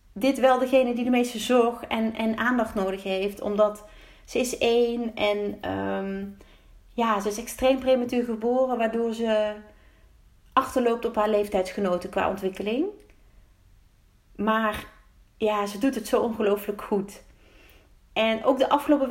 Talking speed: 140 wpm